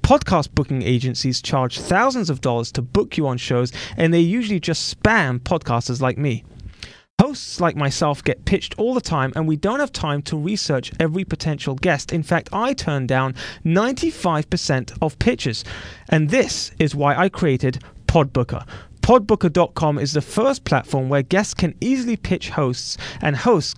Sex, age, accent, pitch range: male, 30-49, British, 130-185 Hz